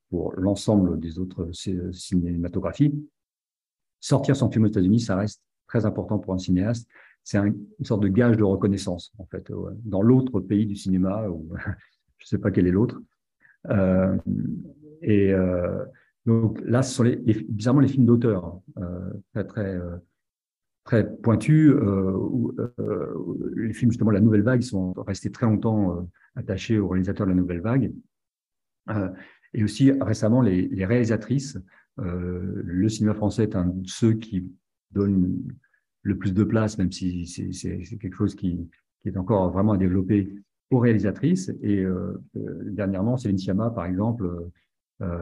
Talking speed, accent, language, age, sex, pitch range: 170 wpm, French, French, 50-69, male, 95-115 Hz